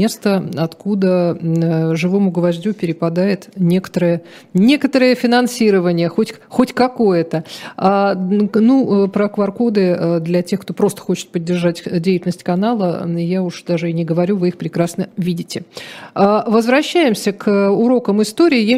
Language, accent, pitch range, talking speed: Russian, native, 180-225 Hz, 130 wpm